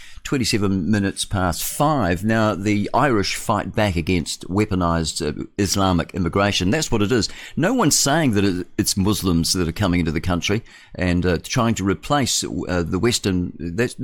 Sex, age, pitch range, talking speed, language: male, 50-69, 90-120 Hz, 165 wpm, English